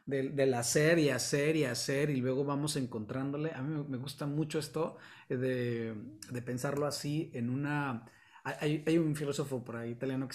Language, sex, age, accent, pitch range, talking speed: Spanish, male, 30-49, Mexican, 130-165 Hz, 180 wpm